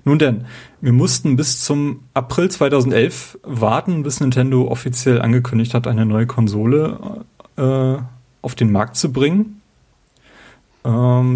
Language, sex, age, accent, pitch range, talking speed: German, male, 30-49, German, 115-130 Hz, 125 wpm